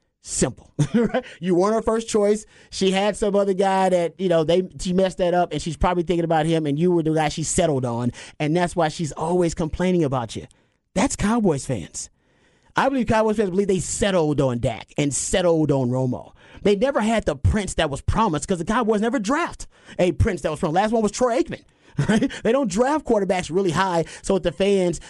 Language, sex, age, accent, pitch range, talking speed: English, male, 30-49, American, 140-190 Hz, 215 wpm